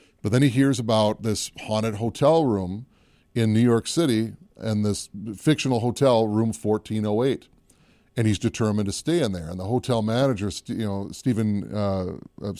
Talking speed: 160 wpm